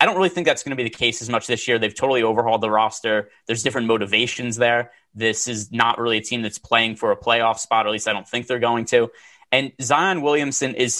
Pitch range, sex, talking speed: 115-135 Hz, male, 260 wpm